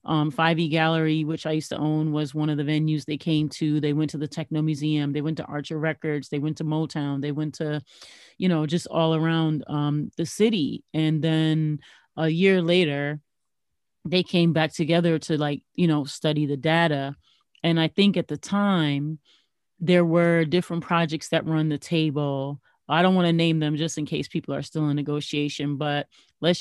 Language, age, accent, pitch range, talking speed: English, 30-49, American, 150-165 Hz, 200 wpm